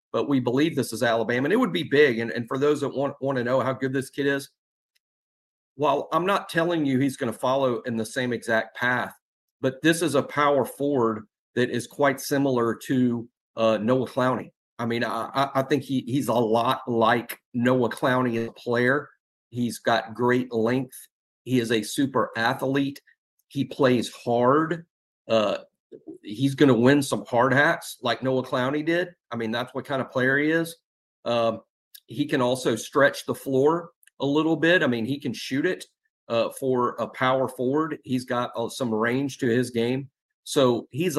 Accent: American